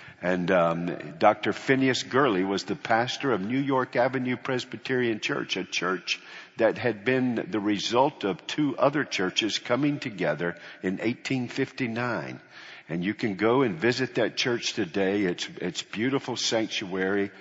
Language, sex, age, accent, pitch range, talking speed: English, male, 50-69, American, 95-130 Hz, 150 wpm